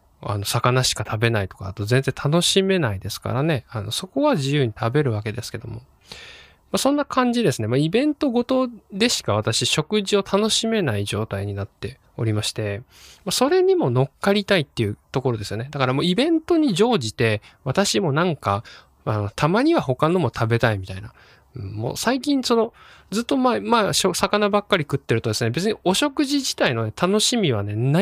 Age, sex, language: 20-39, male, Japanese